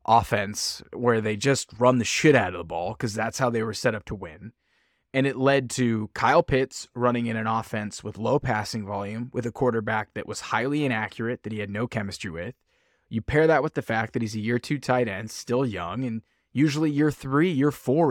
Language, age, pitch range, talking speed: English, 20-39, 110-140 Hz, 225 wpm